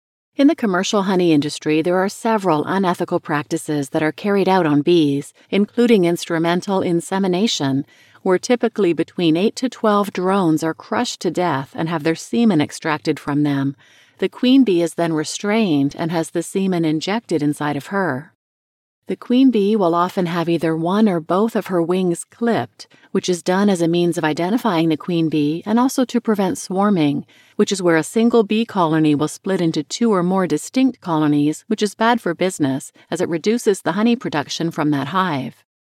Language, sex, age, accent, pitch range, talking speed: English, female, 40-59, American, 160-210 Hz, 185 wpm